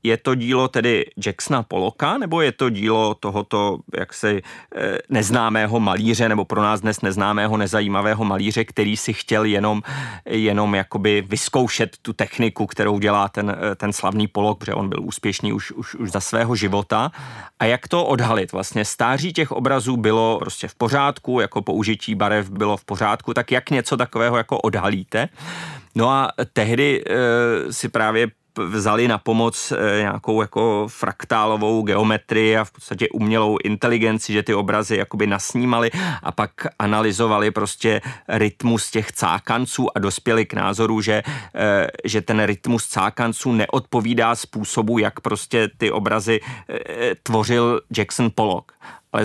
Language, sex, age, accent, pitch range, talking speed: Czech, male, 30-49, native, 105-120 Hz, 145 wpm